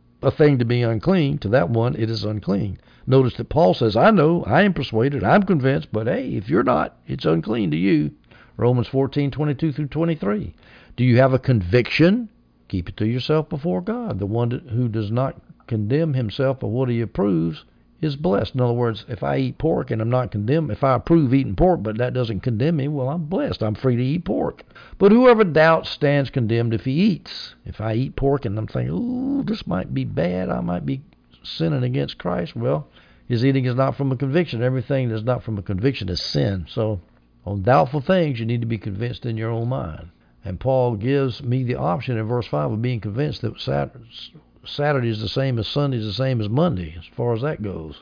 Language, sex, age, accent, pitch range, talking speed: English, male, 60-79, American, 105-140 Hz, 215 wpm